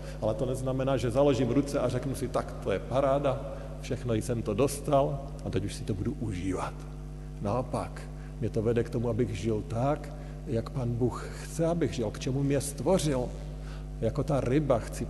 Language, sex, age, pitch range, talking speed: Slovak, male, 50-69, 110-150 Hz, 185 wpm